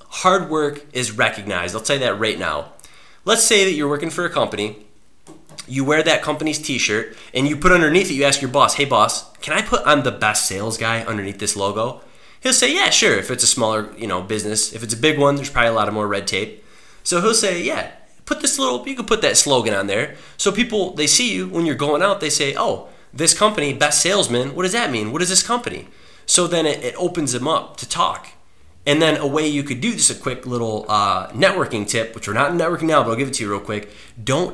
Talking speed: 250 wpm